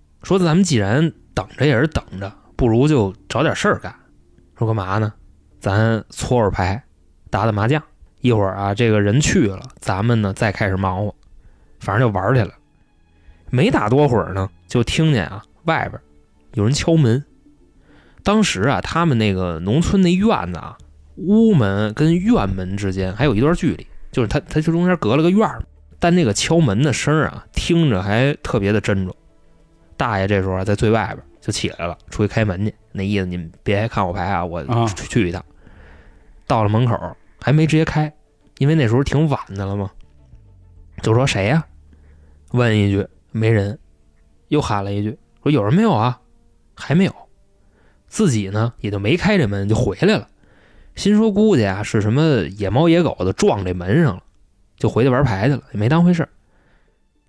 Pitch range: 95-140 Hz